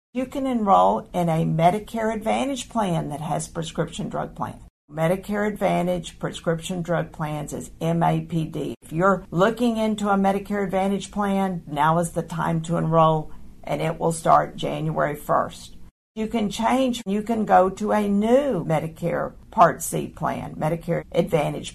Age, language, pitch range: 50-69, English, 165-210 Hz